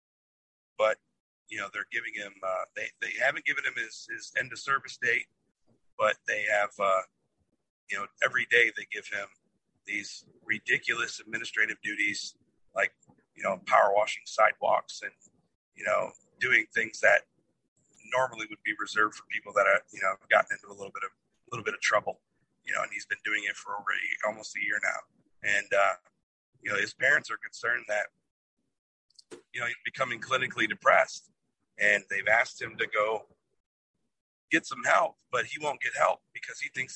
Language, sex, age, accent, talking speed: English, male, 40-59, American, 180 wpm